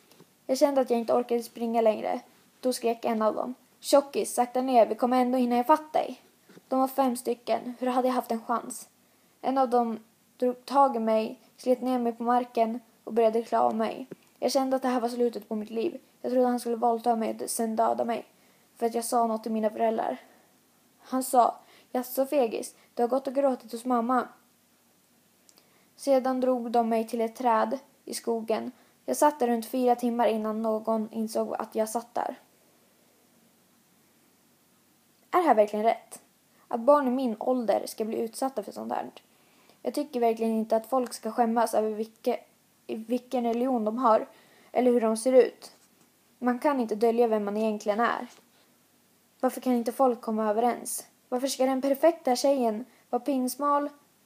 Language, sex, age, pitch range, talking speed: Swedish, female, 20-39, 225-260 Hz, 185 wpm